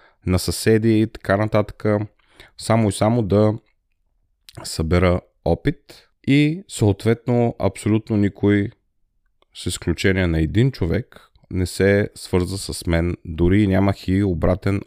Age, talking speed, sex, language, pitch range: 30-49, 115 wpm, male, Bulgarian, 95-115 Hz